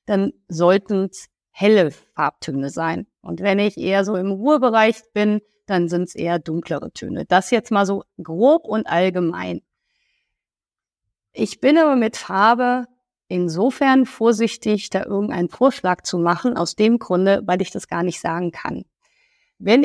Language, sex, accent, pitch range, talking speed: German, female, German, 175-230 Hz, 150 wpm